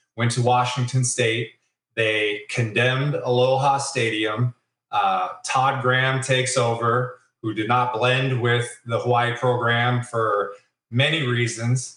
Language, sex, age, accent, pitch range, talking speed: English, male, 20-39, American, 120-130 Hz, 120 wpm